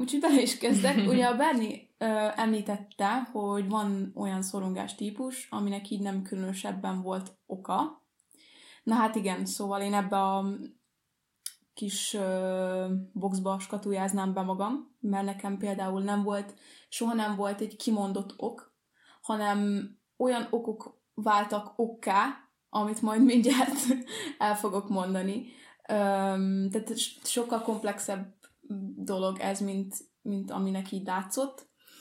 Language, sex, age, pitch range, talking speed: Hungarian, female, 20-39, 200-235 Hz, 120 wpm